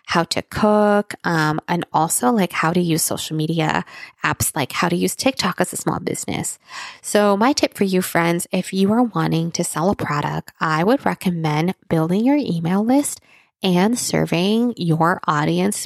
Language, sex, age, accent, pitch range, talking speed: English, female, 20-39, American, 160-195 Hz, 180 wpm